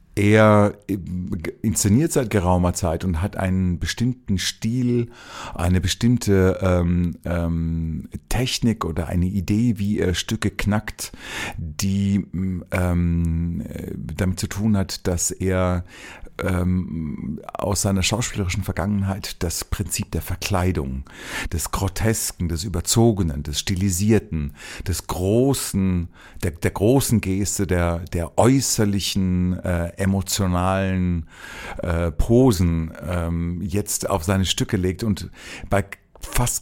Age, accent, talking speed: 40-59, German, 110 wpm